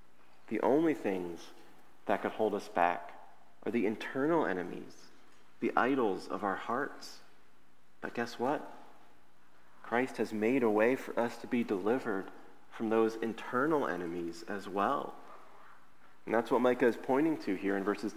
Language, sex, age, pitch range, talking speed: English, male, 30-49, 105-135 Hz, 150 wpm